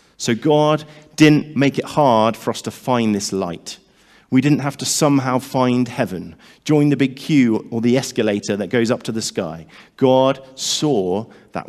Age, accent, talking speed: 40-59, British, 180 wpm